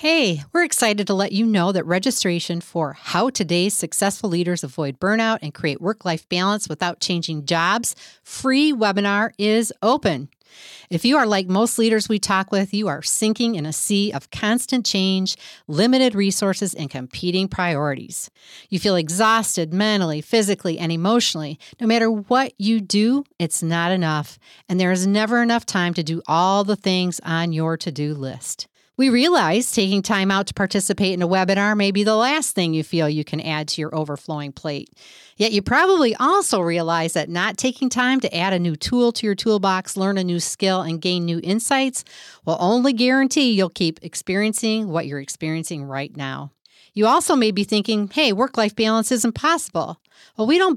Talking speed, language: 180 wpm, English